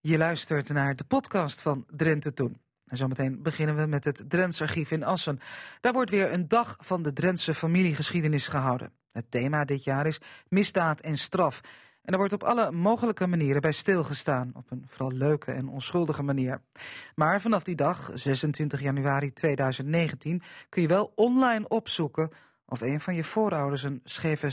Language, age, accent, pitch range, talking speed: Dutch, 40-59, Dutch, 140-185 Hz, 170 wpm